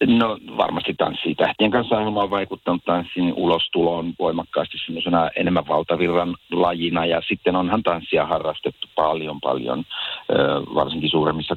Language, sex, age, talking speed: Finnish, male, 50-69, 115 wpm